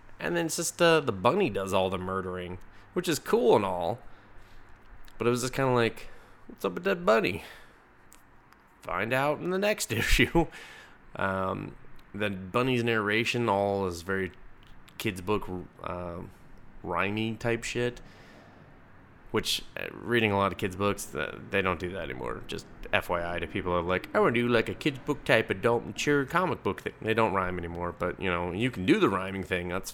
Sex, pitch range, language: male, 95-120 Hz, English